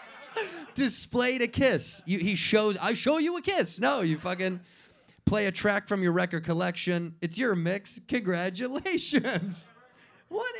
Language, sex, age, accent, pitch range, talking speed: English, male, 30-49, American, 135-195 Hz, 145 wpm